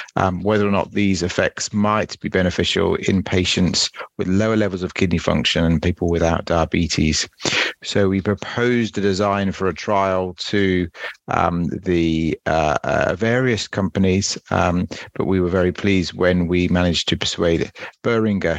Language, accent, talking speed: English, British, 155 wpm